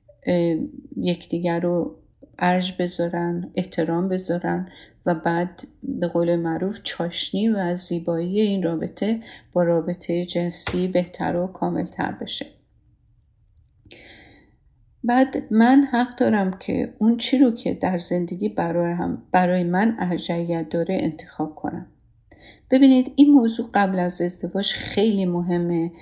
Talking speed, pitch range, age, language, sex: 120 wpm, 170-215 Hz, 50-69, Persian, female